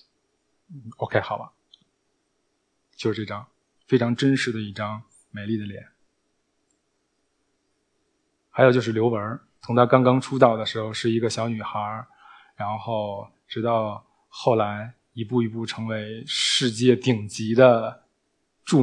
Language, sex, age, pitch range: Chinese, male, 20-39, 110-130 Hz